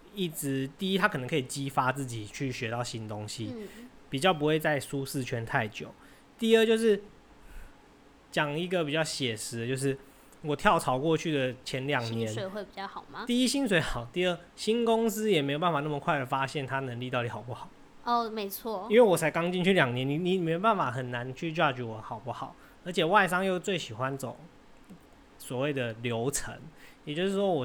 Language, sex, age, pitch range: Chinese, male, 20-39, 125-170 Hz